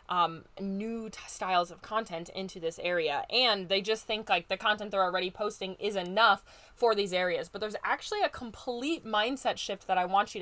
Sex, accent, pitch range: female, American, 195-240 Hz